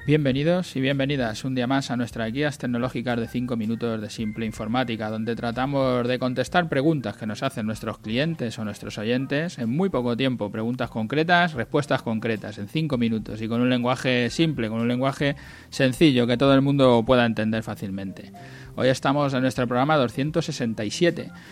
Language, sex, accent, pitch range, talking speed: Spanish, male, Spanish, 115-140 Hz, 175 wpm